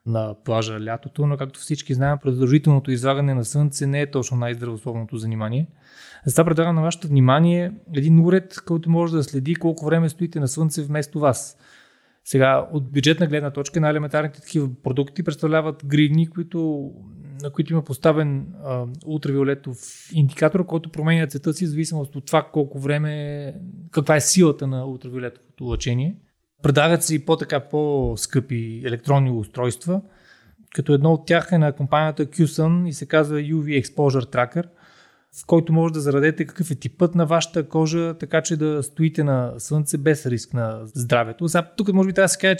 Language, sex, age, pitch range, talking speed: Bulgarian, male, 20-39, 140-165 Hz, 165 wpm